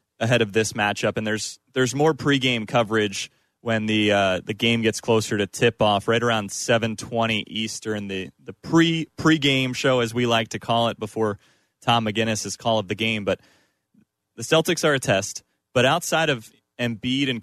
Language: English